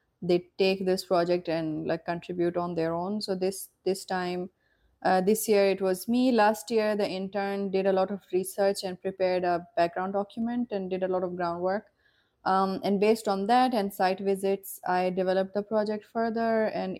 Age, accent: 20-39, Indian